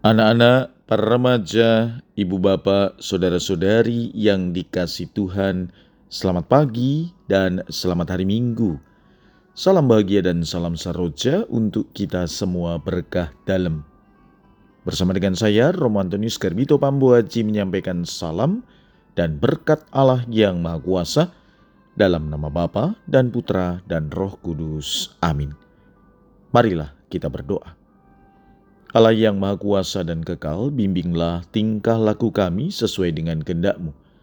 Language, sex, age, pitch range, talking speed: Indonesian, male, 40-59, 85-115 Hz, 110 wpm